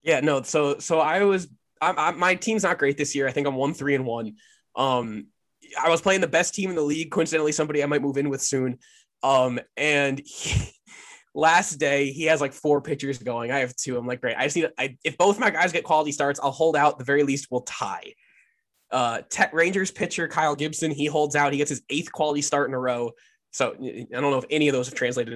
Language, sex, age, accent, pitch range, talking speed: English, male, 20-39, American, 140-185 Hz, 240 wpm